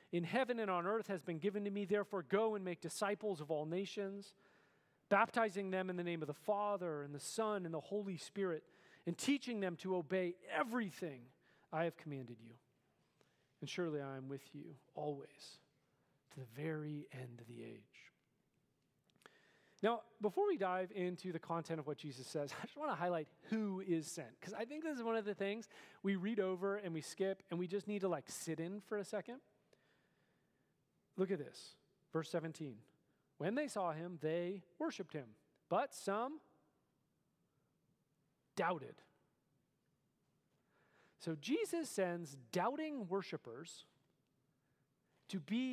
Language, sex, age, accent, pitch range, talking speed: English, male, 40-59, American, 155-205 Hz, 165 wpm